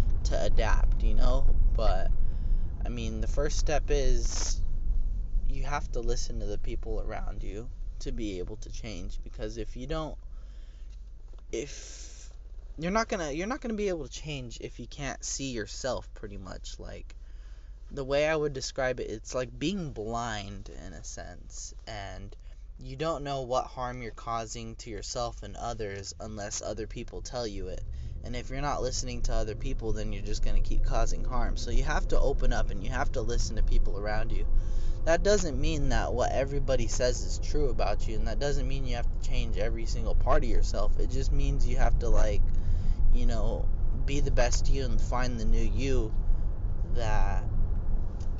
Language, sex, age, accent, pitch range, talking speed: English, male, 20-39, American, 90-120 Hz, 190 wpm